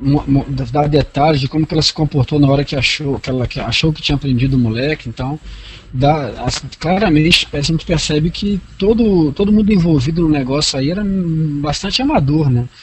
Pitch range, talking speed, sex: 135-185 Hz, 185 wpm, male